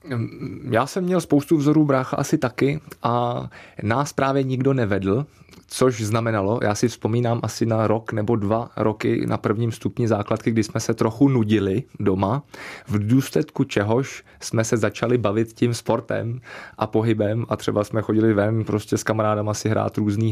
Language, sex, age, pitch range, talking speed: Czech, male, 20-39, 100-120 Hz, 165 wpm